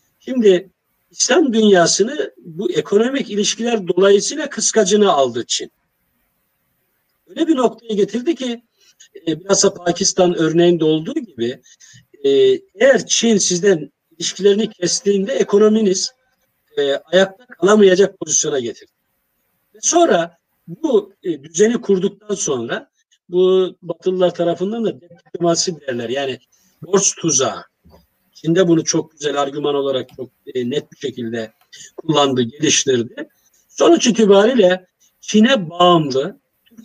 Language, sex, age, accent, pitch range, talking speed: Turkish, male, 50-69, native, 165-215 Hz, 105 wpm